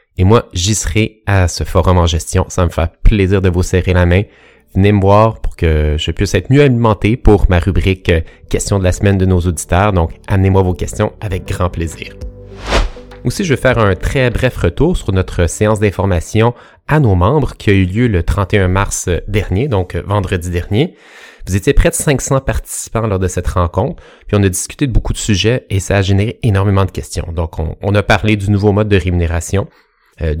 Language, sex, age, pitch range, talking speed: French, male, 30-49, 90-110 Hz, 210 wpm